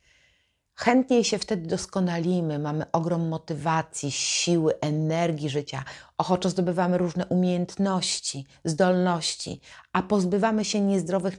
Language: Polish